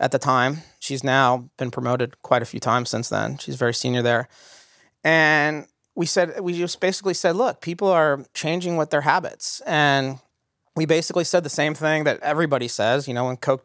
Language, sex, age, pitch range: English, male, 30-49, 125-155 Hz